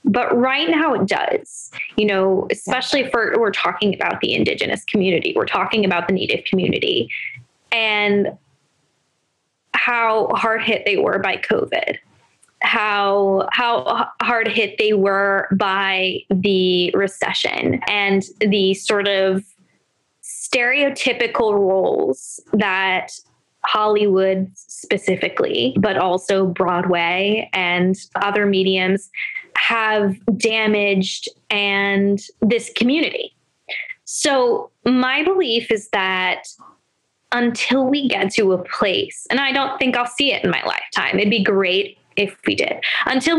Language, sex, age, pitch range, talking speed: English, female, 10-29, 190-235 Hz, 120 wpm